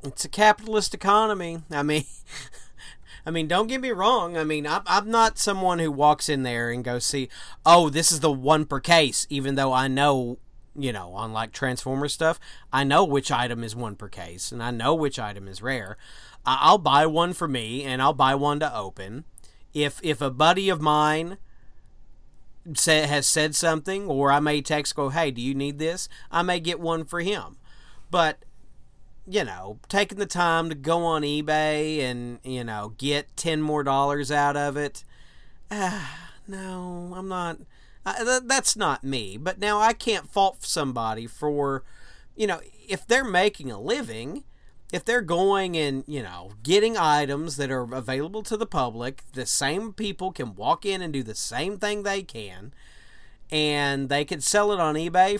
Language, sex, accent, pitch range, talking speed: English, male, American, 130-175 Hz, 185 wpm